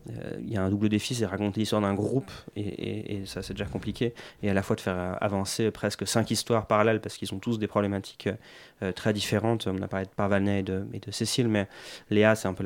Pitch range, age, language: 95-110 Hz, 30-49, French